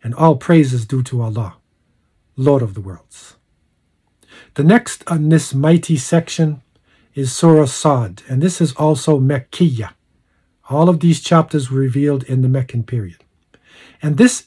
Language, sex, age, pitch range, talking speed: English, male, 60-79, 130-165 Hz, 155 wpm